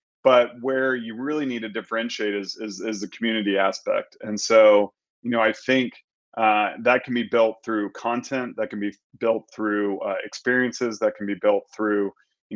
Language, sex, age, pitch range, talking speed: English, male, 30-49, 105-120 Hz, 185 wpm